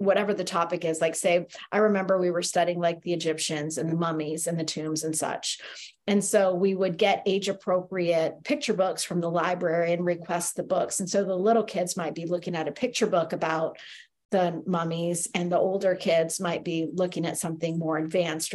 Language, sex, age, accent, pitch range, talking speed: English, female, 40-59, American, 165-190 Hz, 205 wpm